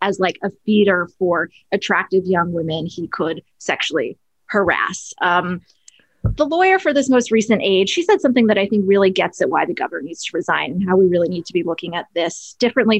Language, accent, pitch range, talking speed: English, American, 185-230 Hz, 210 wpm